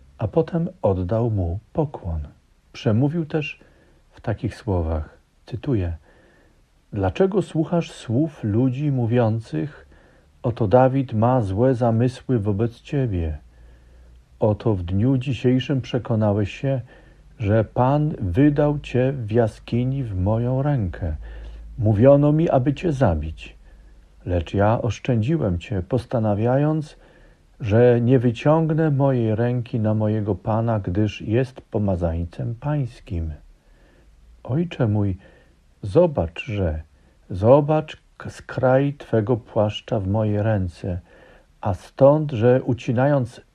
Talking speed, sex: 105 wpm, male